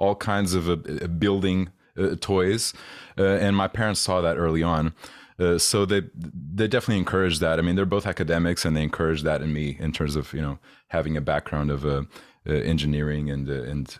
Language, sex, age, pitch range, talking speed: English, male, 30-49, 75-95 Hz, 205 wpm